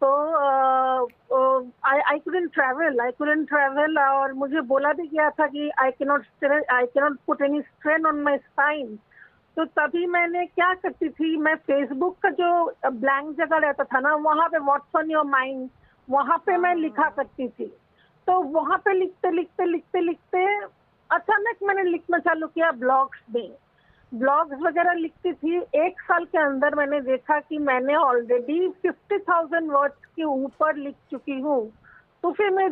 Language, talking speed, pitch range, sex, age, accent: English, 140 wpm, 275-340 Hz, female, 50-69, Indian